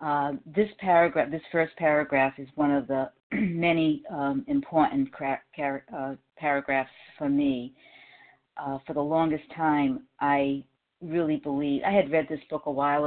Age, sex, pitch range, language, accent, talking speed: 50-69, female, 140-170 Hz, English, American, 140 wpm